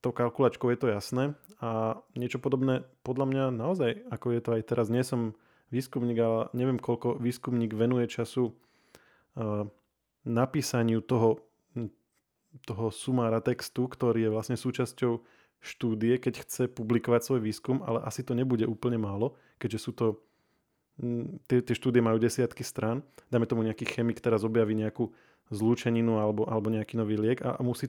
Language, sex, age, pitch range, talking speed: Slovak, male, 20-39, 115-125 Hz, 150 wpm